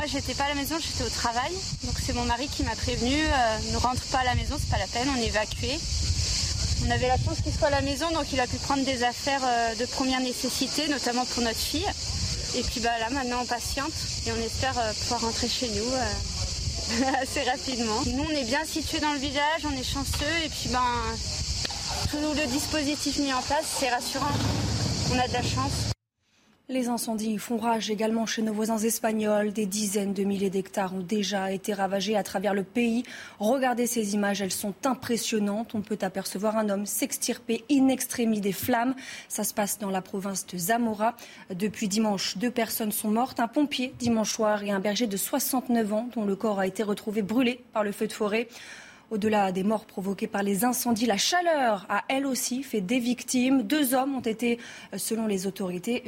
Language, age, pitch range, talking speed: French, 20-39, 205-255 Hz, 210 wpm